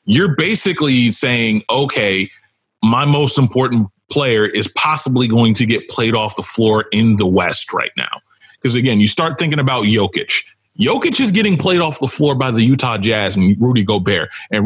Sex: male